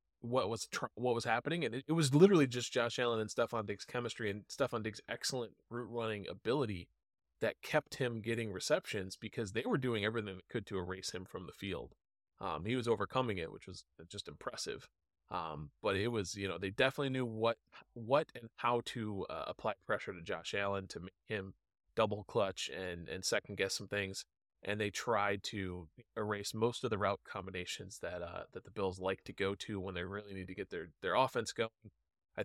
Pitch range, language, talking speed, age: 95-120 Hz, English, 205 wpm, 30-49